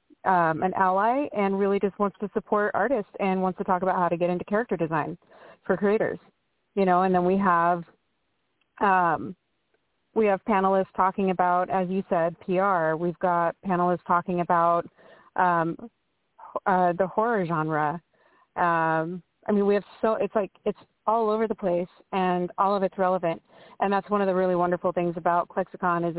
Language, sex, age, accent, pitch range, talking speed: English, female, 30-49, American, 175-200 Hz, 175 wpm